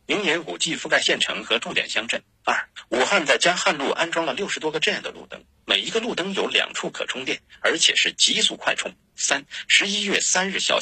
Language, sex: Chinese, male